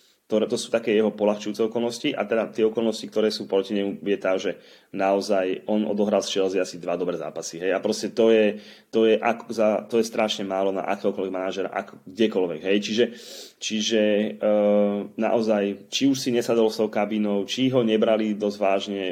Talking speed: 190 wpm